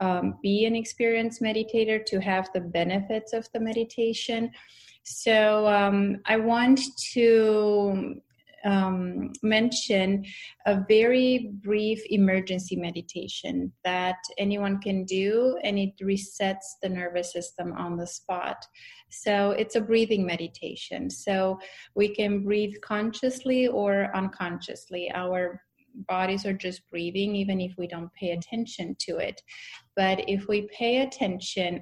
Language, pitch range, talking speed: English, 185-220 Hz, 125 wpm